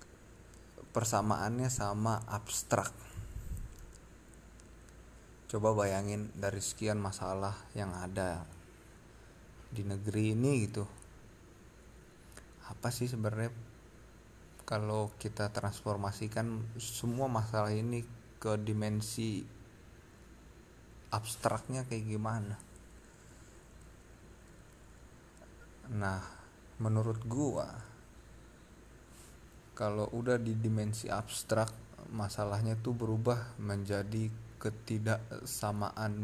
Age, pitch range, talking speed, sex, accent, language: 20-39, 105-115 Hz, 70 wpm, male, native, Indonesian